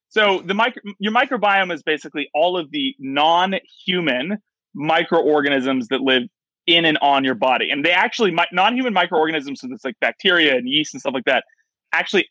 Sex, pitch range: male, 135-200 Hz